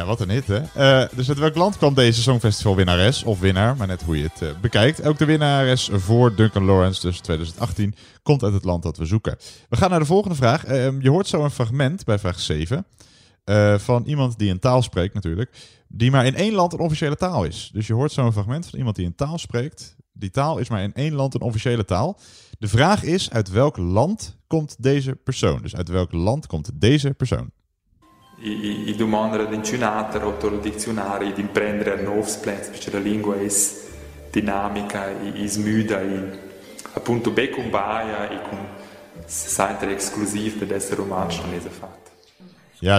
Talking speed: 150 wpm